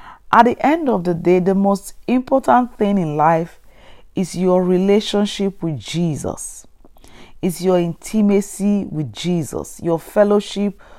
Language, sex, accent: English, female, Nigerian